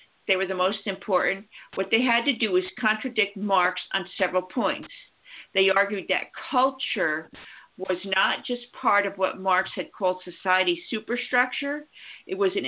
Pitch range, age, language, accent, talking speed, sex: 185-235 Hz, 50-69, English, American, 160 wpm, female